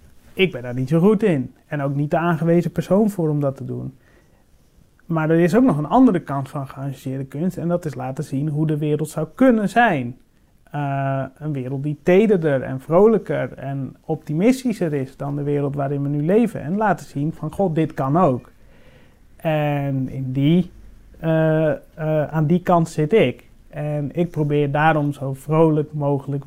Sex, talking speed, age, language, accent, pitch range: male, 180 wpm, 30-49, Dutch, Dutch, 140-180 Hz